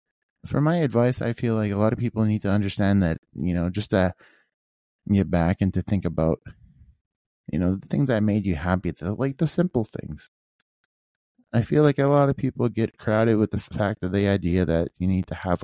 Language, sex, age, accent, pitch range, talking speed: English, male, 20-39, American, 90-115 Hz, 220 wpm